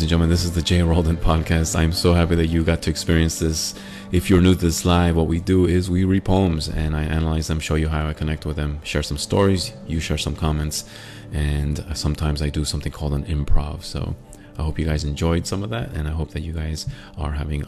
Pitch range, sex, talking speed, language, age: 75-95 Hz, male, 250 wpm, English, 30-49